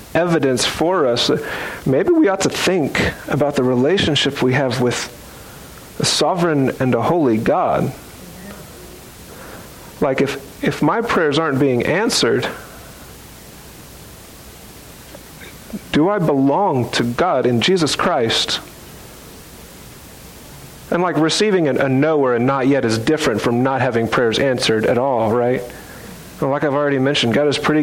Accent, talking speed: American, 135 wpm